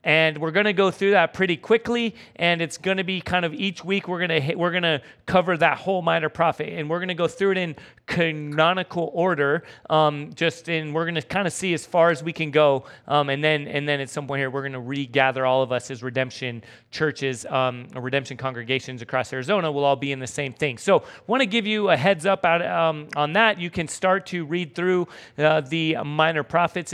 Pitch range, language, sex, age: 140-170 Hz, English, male, 30-49